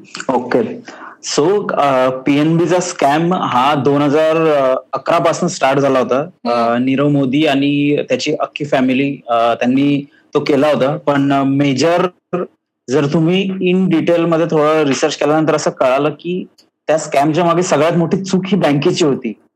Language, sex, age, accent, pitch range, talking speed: Marathi, male, 30-49, native, 140-175 Hz, 140 wpm